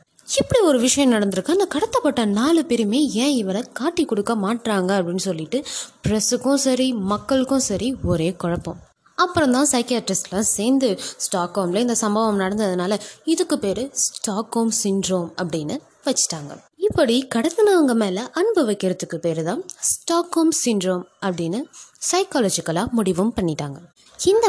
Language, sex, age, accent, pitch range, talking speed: Tamil, female, 20-39, native, 190-280 Hz, 125 wpm